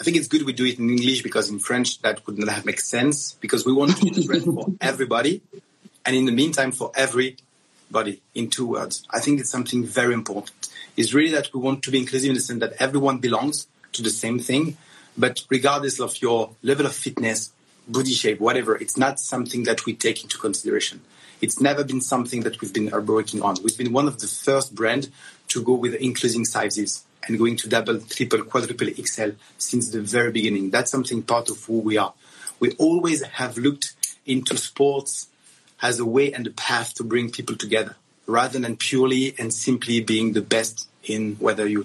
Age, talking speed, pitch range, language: 30-49, 200 wpm, 115-140 Hz, French